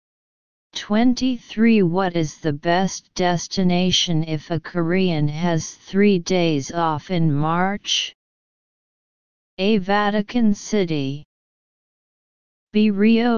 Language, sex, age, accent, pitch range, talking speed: English, female, 30-49, American, 160-200 Hz, 90 wpm